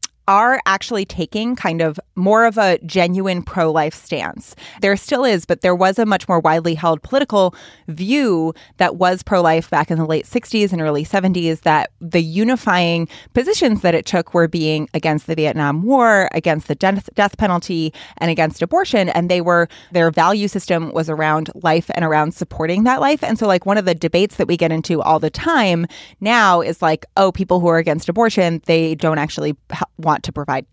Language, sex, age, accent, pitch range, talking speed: English, female, 20-39, American, 160-205 Hz, 195 wpm